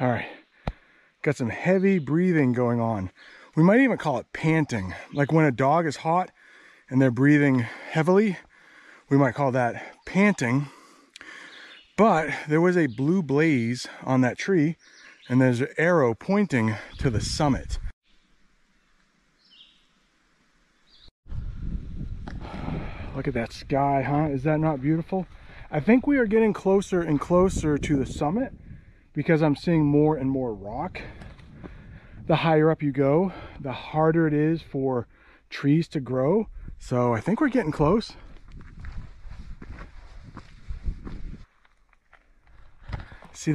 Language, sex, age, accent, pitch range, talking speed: English, male, 30-49, American, 125-165 Hz, 130 wpm